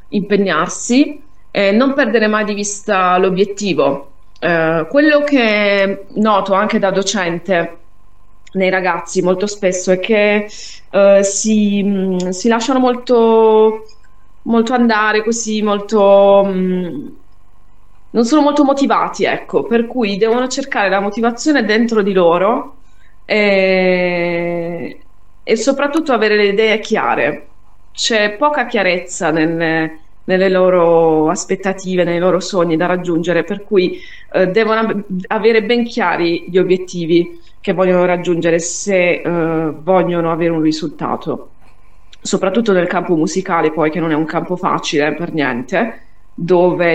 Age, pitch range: 20-39, 175-215 Hz